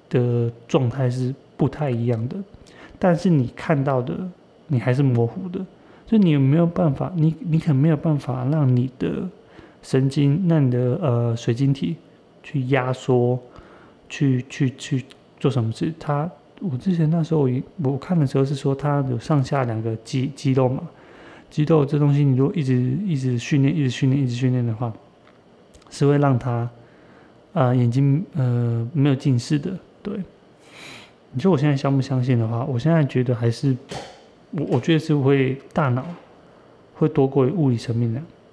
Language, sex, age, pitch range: Chinese, male, 30-49, 125-155 Hz